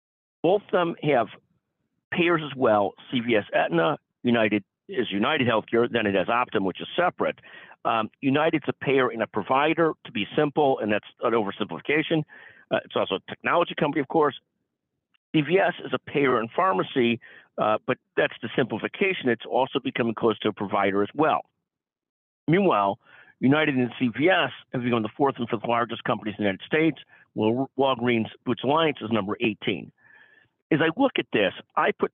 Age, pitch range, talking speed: 50-69, 115-150 Hz, 170 wpm